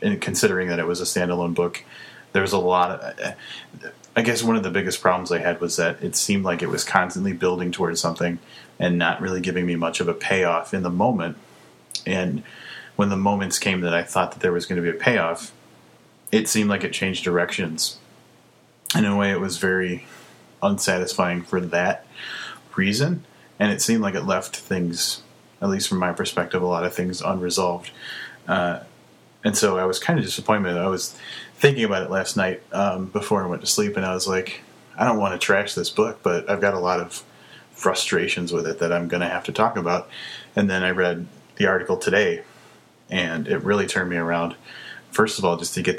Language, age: English, 30-49